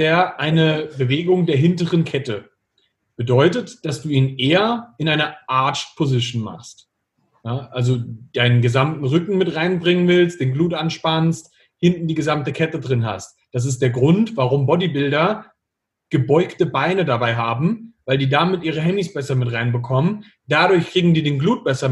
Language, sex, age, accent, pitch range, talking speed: German, male, 40-59, German, 130-175 Hz, 150 wpm